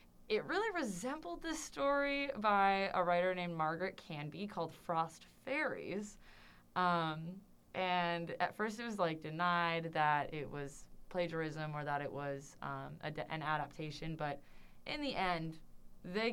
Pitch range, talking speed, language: 150-195 Hz, 140 wpm, English